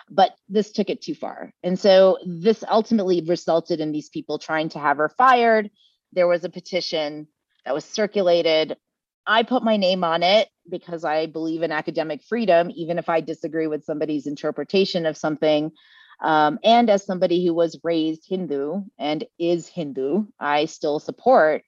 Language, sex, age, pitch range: English, female, 30-49, 155-185 Hz